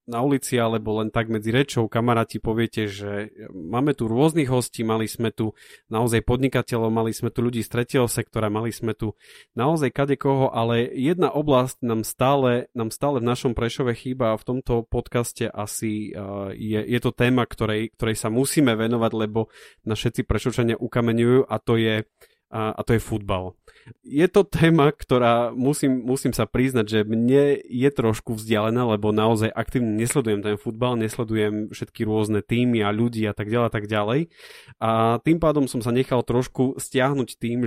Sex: male